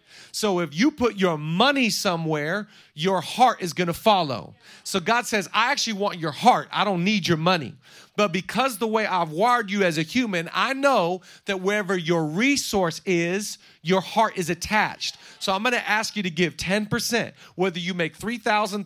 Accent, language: American, English